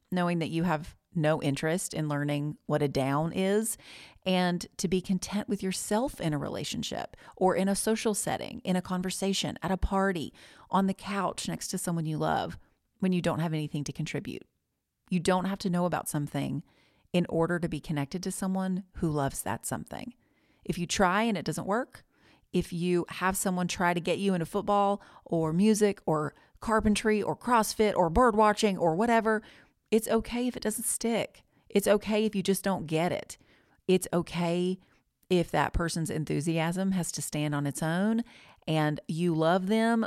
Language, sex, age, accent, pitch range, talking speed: English, female, 40-59, American, 155-195 Hz, 185 wpm